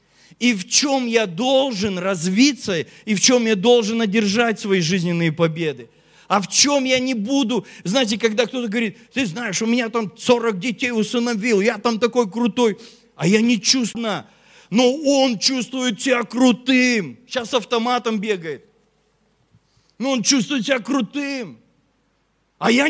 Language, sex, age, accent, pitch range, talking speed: Russian, male, 40-59, native, 185-255 Hz, 145 wpm